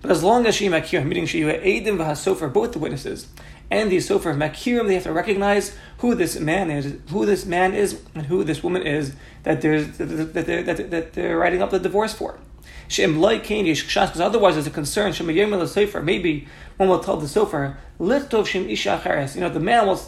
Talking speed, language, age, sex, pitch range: 200 wpm, English, 30-49, male, 155-200 Hz